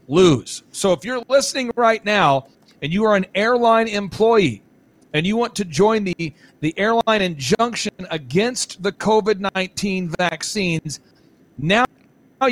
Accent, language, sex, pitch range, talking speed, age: American, English, male, 170-210 Hz, 135 wpm, 40-59